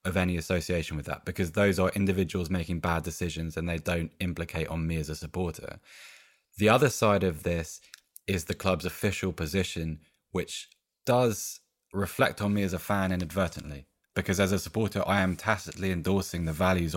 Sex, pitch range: male, 85-100 Hz